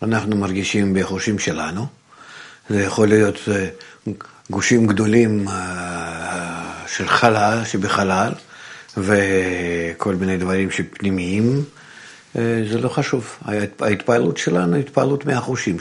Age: 50-69